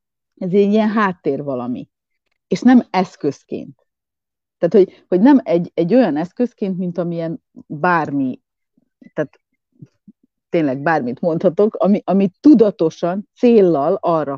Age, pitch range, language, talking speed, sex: 30-49, 155-225 Hz, Hungarian, 115 wpm, female